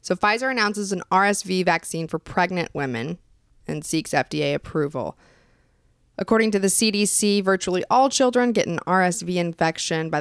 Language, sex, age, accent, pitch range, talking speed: English, female, 20-39, American, 150-185 Hz, 145 wpm